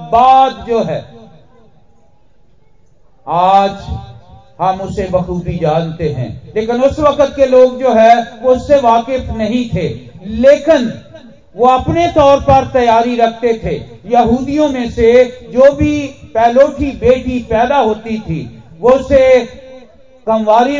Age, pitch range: 40-59, 185-260 Hz